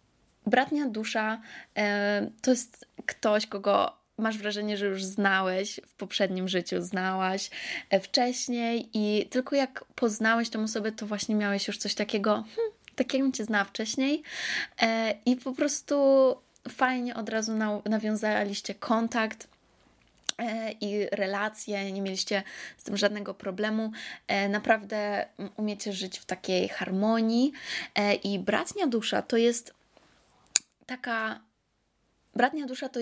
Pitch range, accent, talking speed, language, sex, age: 205-245 Hz, native, 115 wpm, Polish, female, 20-39